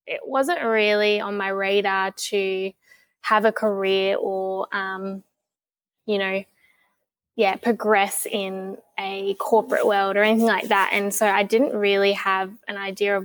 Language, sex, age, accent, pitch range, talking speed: English, female, 20-39, Australian, 200-230 Hz, 150 wpm